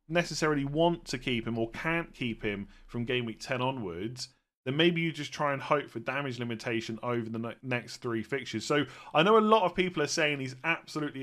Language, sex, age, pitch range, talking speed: English, male, 30-49, 120-160 Hz, 215 wpm